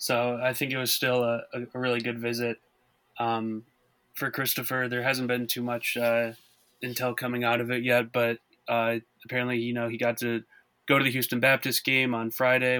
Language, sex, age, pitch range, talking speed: English, male, 20-39, 115-125 Hz, 195 wpm